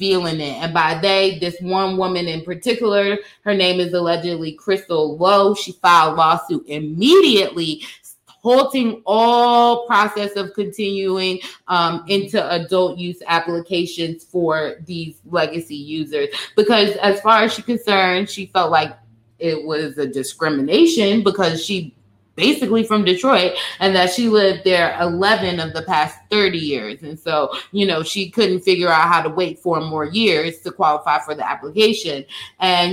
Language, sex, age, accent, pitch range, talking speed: English, female, 20-39, American, 170-215 Hz, 155 wpm